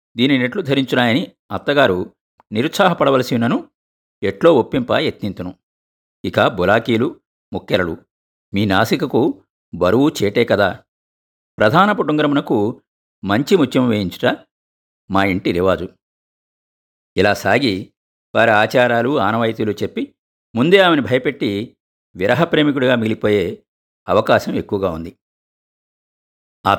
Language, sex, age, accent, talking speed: Telugu, male, 50-69, native, 85 wpm